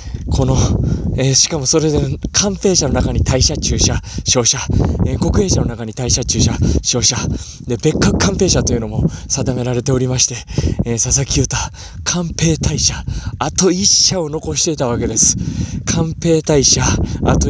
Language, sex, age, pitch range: Japanese, male, 20-39, 120-150 Hz